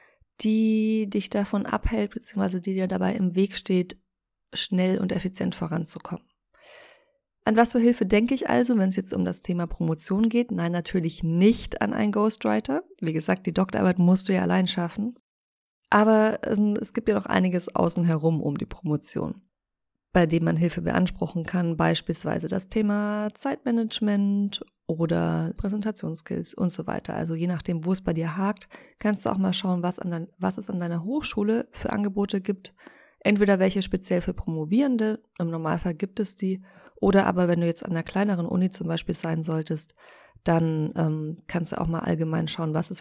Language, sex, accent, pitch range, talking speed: German, female, German, 165-210 Hz, 175 wpm